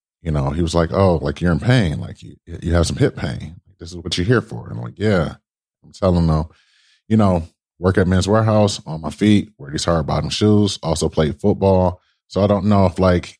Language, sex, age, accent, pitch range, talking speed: English, male, 30-49, American, 95-150 Hz, 235 wpm